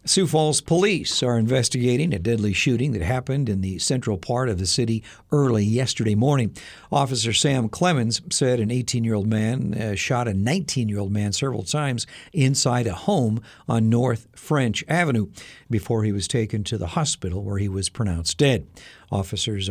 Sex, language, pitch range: male, Japanese, 105-140 Hz